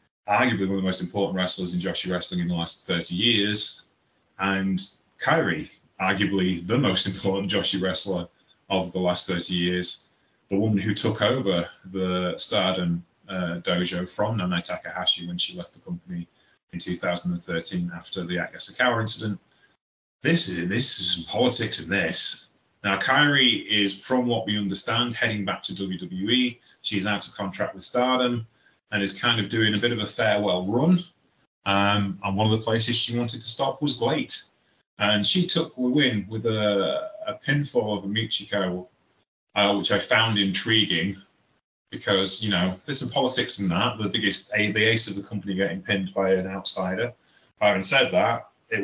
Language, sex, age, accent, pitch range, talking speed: English, male, 30-49, British, 95-115 Hz, 175 wpm